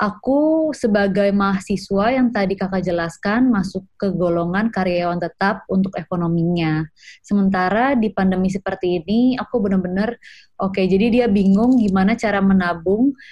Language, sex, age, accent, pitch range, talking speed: Indonesian, female, 20-39, native, 180-220 Hz, 130 wpm